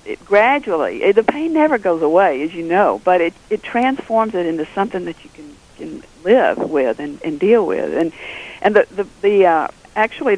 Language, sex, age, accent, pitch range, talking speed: English, female, 50-69, American, 165-215 Hz, 195 wpm